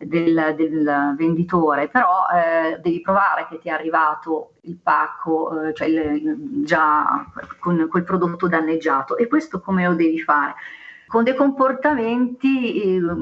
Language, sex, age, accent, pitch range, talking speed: Italian, female, 40-59, native, 160-215 Hz, 140 wpm